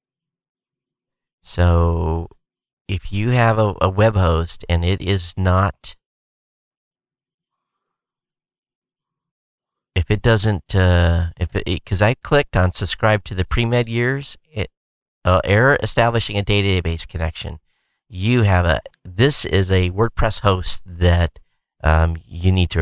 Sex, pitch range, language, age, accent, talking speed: male, 85-105 Hz, English, 40-59, American, 125 wpm